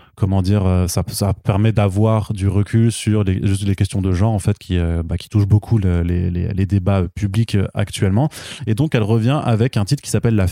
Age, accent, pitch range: 20-39, French, 95-110 Hz